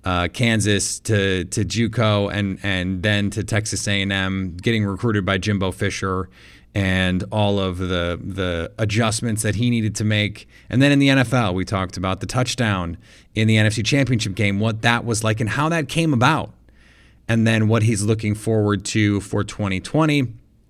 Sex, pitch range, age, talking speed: male, 100-120 Hz, 30-49, 175 wpm